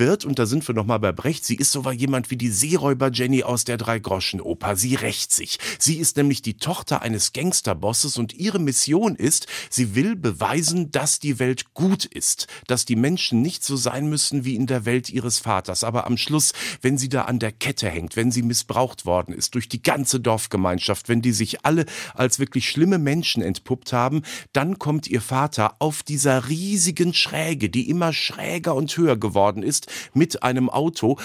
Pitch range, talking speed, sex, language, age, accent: 110-140 Hz, 190 wpm, male, German, 50-69, German